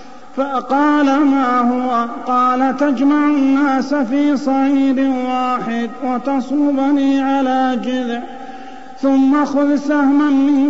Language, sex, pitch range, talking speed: Arabic, male, 255-275 Hz, 90 wpm